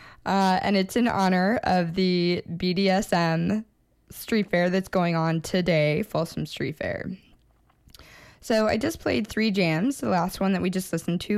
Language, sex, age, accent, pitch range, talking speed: English, female, 10-29, American, 165-200 Hz, 165 wpm